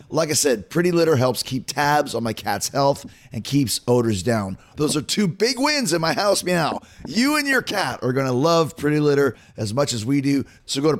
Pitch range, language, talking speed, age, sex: 125-160 Hz, English, 235 wpm, 30-49, male